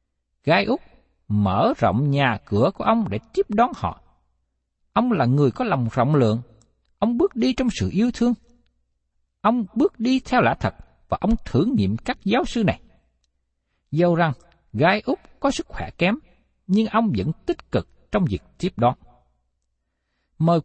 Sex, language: male, Vietnamese